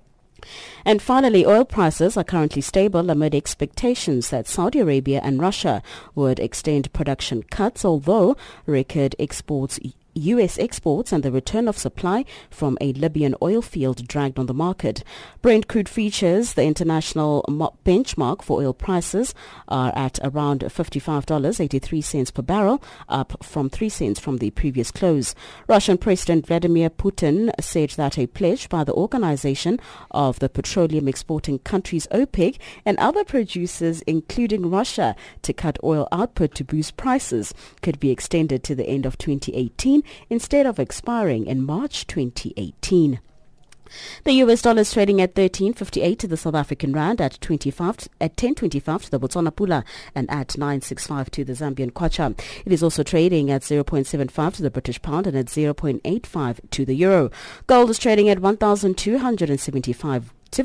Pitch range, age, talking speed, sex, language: 135-195 Hz, 30-49, 150 wpm, female, English